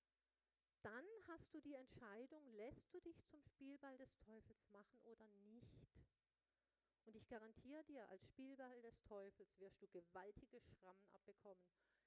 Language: German